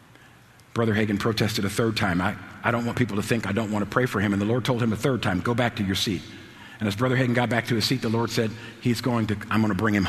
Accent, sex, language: American, male, English